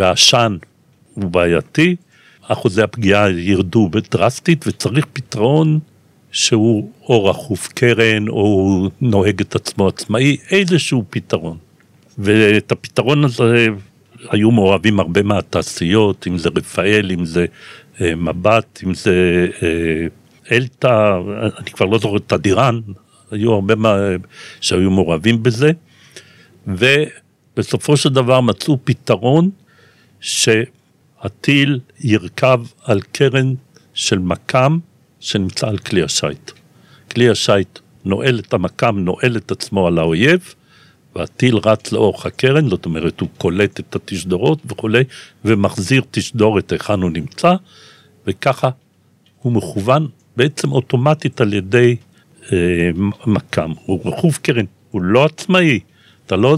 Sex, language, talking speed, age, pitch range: male, Hebrew, 115 wpm, 60-79, 100-130 Hz